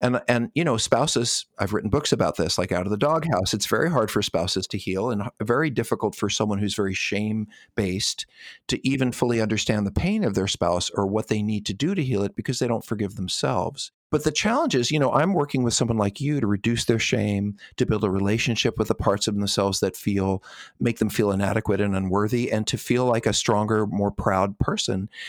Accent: American